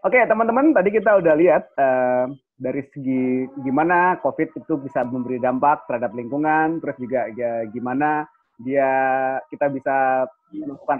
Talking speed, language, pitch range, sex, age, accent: 140 wpm, Indonesian, 130-180 Hz, male, 20-39, native